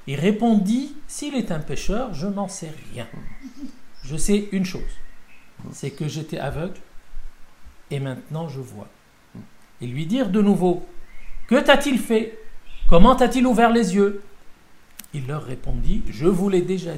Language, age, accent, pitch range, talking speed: French, 50-69, French, 145-205 Hz, 165 wpm